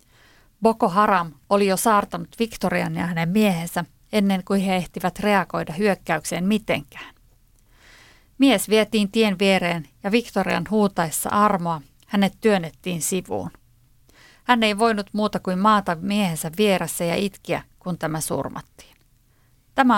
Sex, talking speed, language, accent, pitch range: female, 125 wpm, Finnish, native, 170-215 Hz